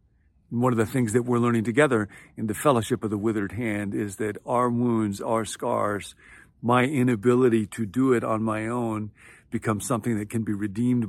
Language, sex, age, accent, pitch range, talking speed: English, male, 50-69, American, 105-125 Hz, 190 wpm